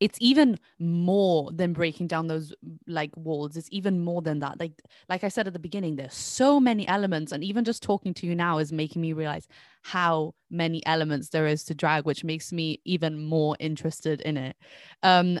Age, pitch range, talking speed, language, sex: 20-39, 160-210 Hz, 205 wpm, English, female